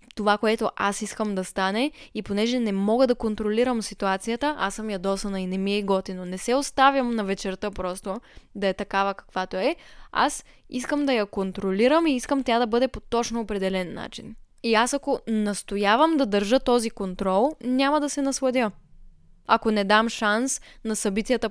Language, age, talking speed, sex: Bulgarian, 10-29, 180 wpm, female